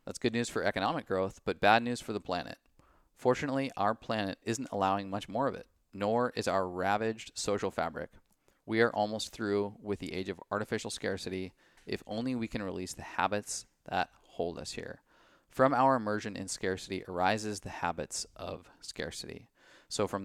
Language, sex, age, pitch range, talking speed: English, male, 30-49, 95-115 Hz, 180 wpm